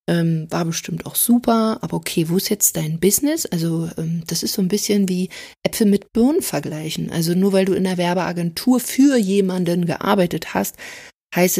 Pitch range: 165-205 Hz